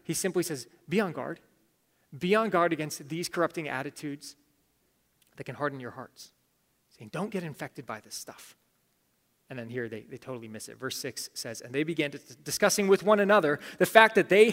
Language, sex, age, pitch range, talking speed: English, male, 30-49, 145-195 Hz, 200 wpm